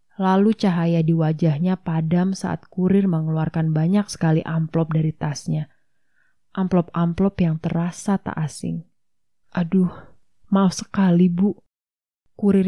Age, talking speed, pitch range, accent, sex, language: 20-39, 110 wpm, 165-190 Hz, native, female, Indonesian